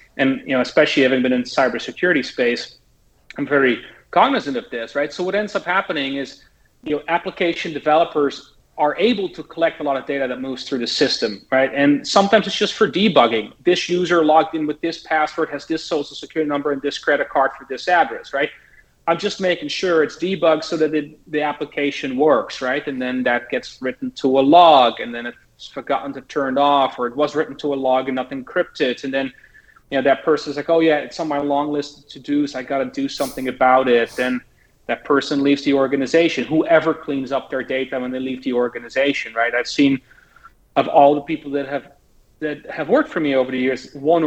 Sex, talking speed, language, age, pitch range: male, 220 wpm, English, 30-49, 130-160 Hz